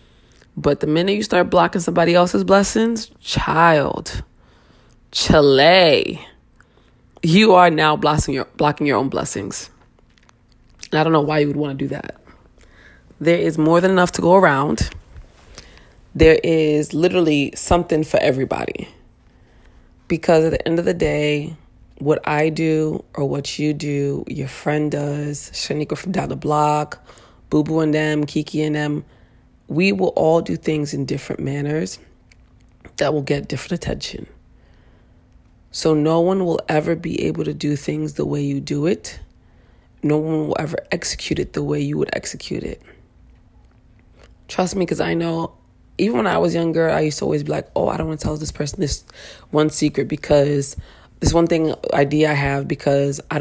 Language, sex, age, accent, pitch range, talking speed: English, female, 20-39, American, 140-165 Hz, 165 wpm